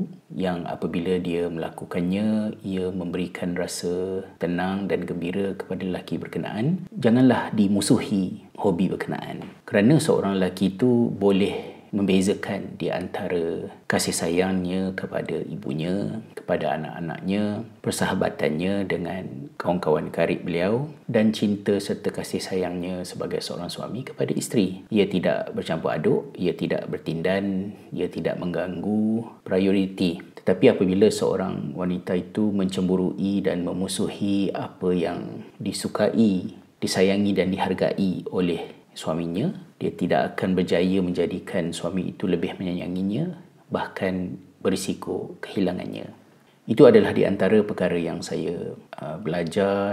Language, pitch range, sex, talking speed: Malay, 90-100 Hz, male, 115 wpm